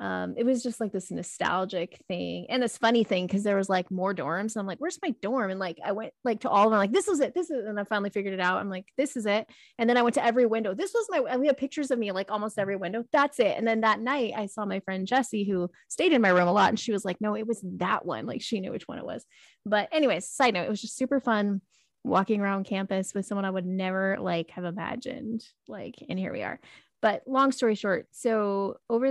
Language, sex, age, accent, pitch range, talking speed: English, female, 20-39, American, 195-235 Hz, 280 wpm